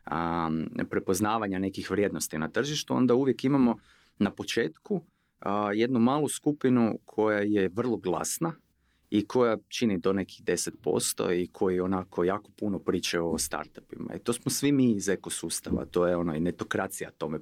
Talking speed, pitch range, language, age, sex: 160 wpm, 90-115 Hz, Croatian, 30-49, male